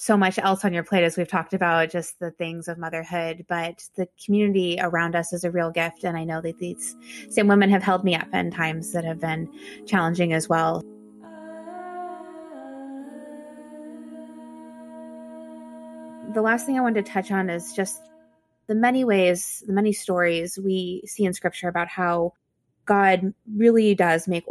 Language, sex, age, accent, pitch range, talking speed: English, female, 20-39, American, 170-200 Hz, 170 wpm